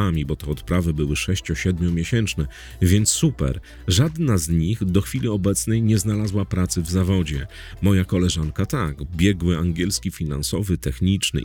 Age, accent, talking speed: 40-59, native, 135 wpm